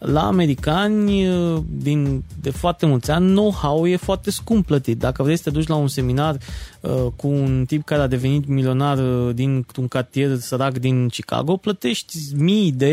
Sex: male